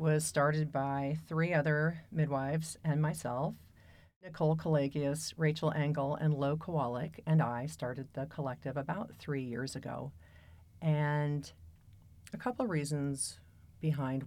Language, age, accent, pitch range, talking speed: English, 40-59, American, 110-150 Hz, 125 wpm